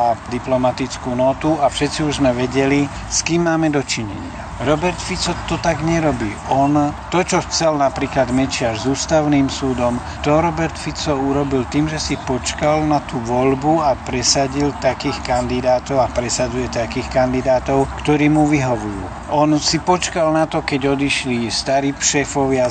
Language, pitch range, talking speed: Slovak, 125-150 Hz, 150 wpm